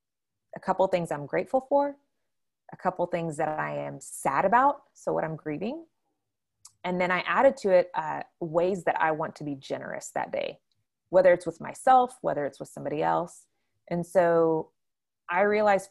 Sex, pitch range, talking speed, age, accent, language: female, 150-185 Hz, 185 wpm, 20-39, American, English